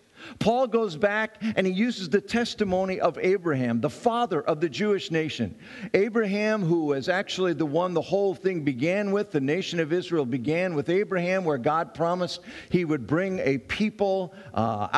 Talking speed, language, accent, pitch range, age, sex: 170 wpm, English, American, 145-215 Hz, 50-69, male